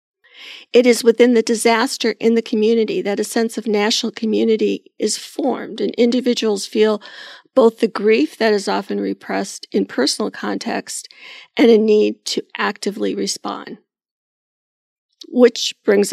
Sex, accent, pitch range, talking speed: female, American, 215-265 Hz, 140 wpm